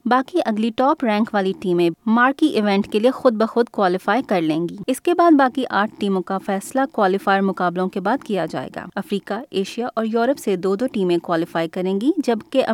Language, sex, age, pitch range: Urdu, female, 20-39, 190-260 Hz